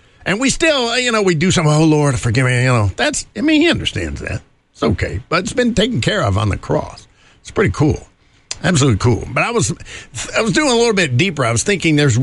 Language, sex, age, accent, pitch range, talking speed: English, male, 50-69, American, 110-155 Hz, 245 wpm